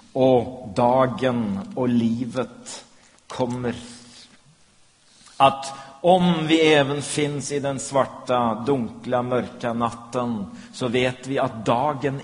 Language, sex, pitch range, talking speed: Swedish, male, 120-145 Hz, 105 wpm